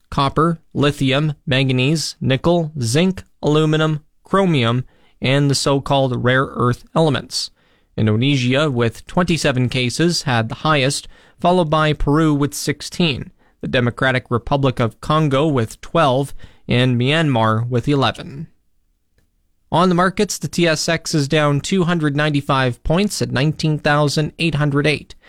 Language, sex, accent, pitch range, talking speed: English, male, American, 125-165 Hz, 110 wpm